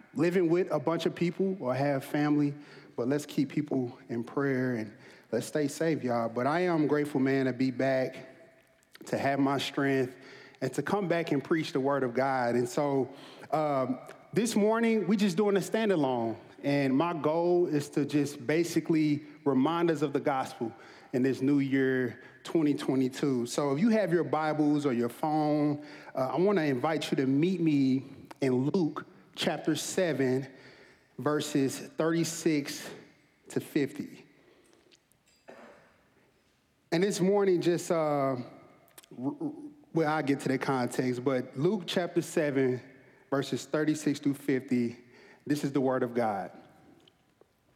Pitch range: 130-165 Hz